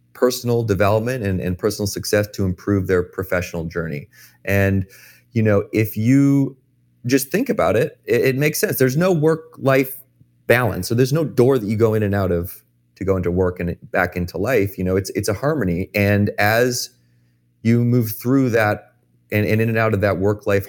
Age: 30-49